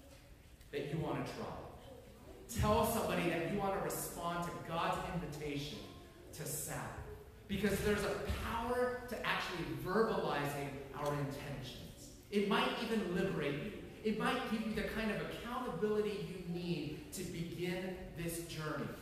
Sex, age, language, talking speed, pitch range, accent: male, 30-49, English, 140 wpm, 160-220 Hz, American